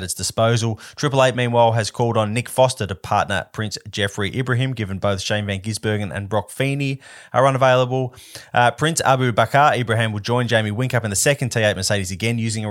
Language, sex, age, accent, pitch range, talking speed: English, male, 20-39, Australian, 100-120 Hz, 195 wpm